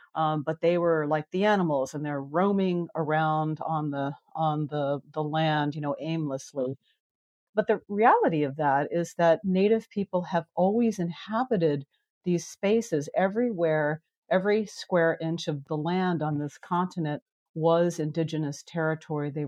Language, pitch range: English, 145-170 Hz